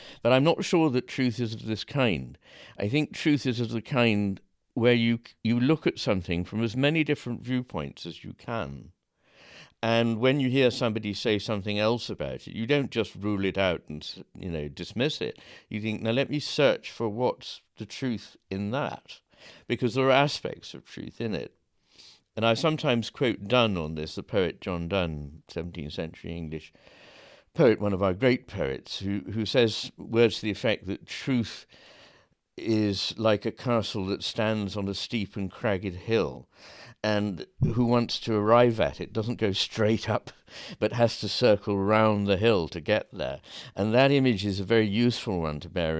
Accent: British